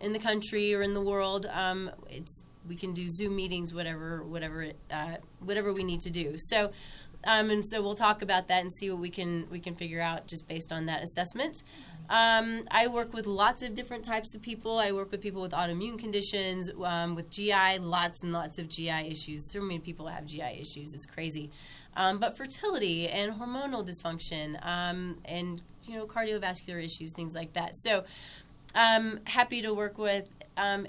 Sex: female